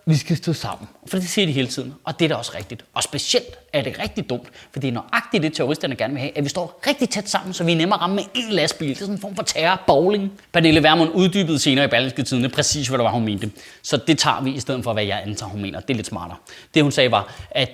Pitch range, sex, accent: 140-215 Hz, male, native